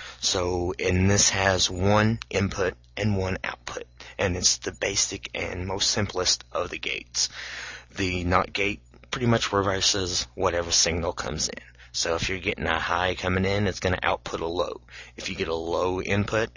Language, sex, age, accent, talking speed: English, male, 30-49, American, 180 wpm